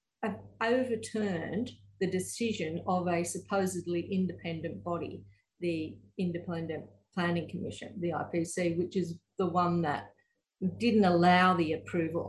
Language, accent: English, Australian